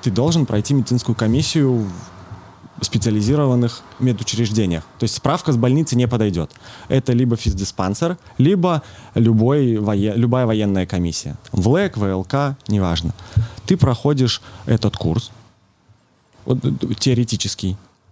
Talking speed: 100 wpm